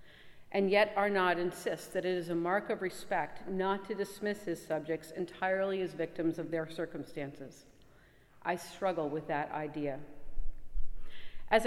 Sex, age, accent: female, 50-69, American